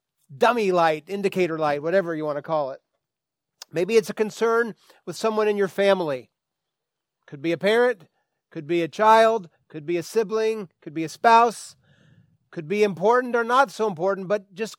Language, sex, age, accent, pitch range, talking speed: English, male, 40-59, American, 155-205 Hz, 180 wpm